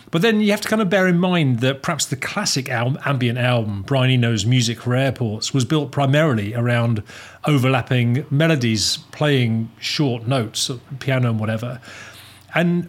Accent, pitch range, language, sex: British, 120-150 Hz, English, male